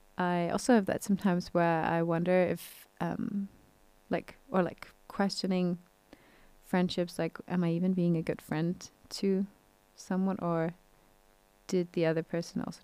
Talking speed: 145 wpm